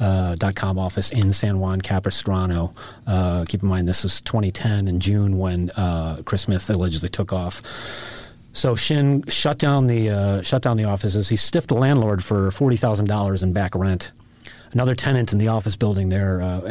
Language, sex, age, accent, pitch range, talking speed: English, male, 30-49, American, 95-120 Hz, 180 wpm